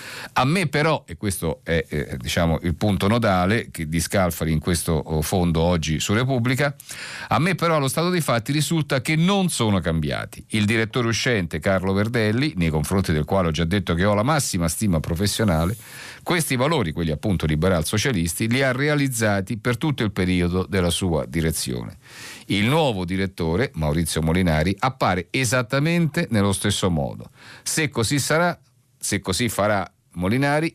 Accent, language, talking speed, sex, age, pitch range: native, Italian, 160 wpm, male, 50-69, 90-130 Hz